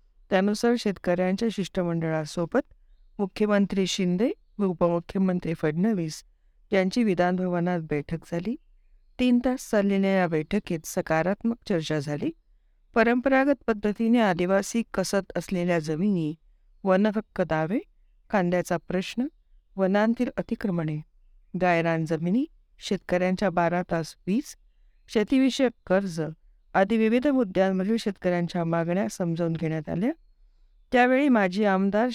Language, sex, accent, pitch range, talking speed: Marathi, female, native, 170-220 Hz, 95 wpm